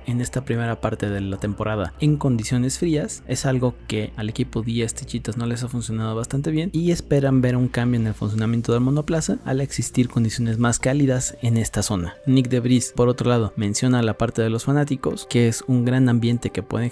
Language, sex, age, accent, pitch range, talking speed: Spanish, male, 30-49, Mexican, 110-130 Hz, 215 wpm